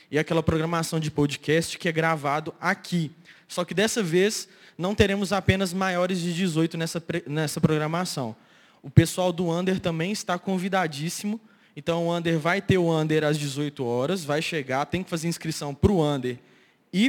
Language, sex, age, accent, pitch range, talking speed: Portuguese, male, 20-39, Brazilian, 155-185 Hz, 170 wpm